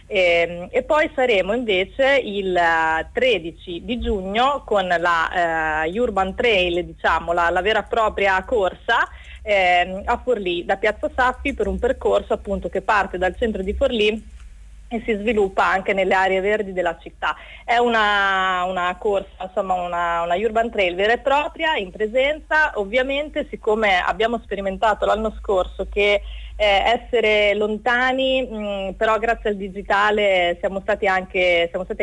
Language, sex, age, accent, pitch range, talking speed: Italian, female, 30-49, native, 180-230 Hz, 145 wpm